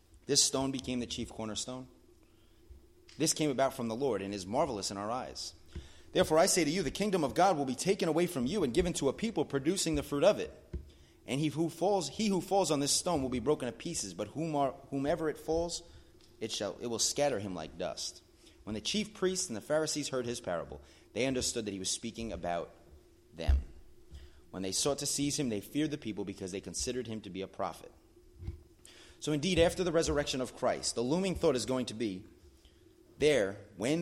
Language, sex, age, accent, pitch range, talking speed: English, male, 30-49, American, 95-150 Hz, 215 wpm